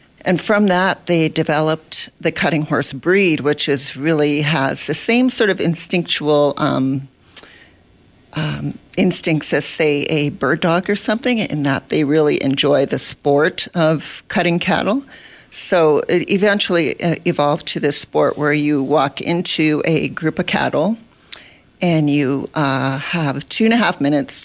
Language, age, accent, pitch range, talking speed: English, 40-59, American, 140-170 Hz, 150 wpm